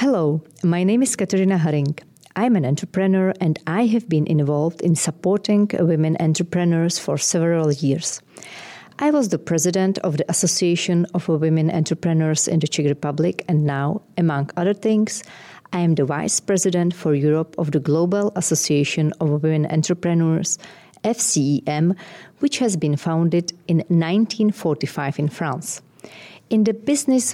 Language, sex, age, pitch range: Czech, female, 40-59, 155-195 Hz